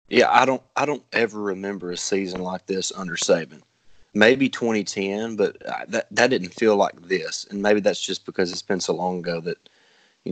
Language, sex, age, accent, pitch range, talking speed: English, male, 20-39, American, 90-105 Hz, 200 wpm